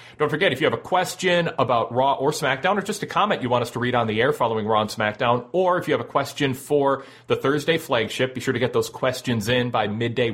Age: 30-49